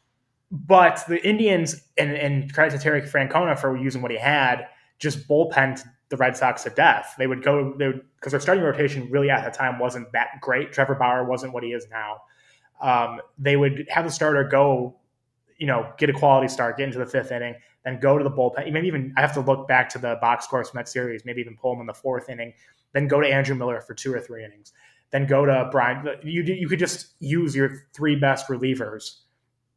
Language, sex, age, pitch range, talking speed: English, male, 20-39, 125-145 Hz, 230 wpm